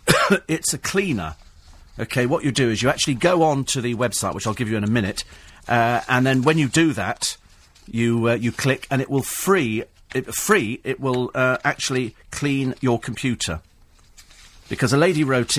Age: 40-59